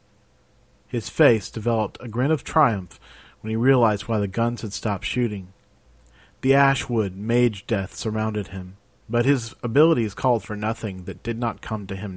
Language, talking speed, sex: English, 170 wpm, male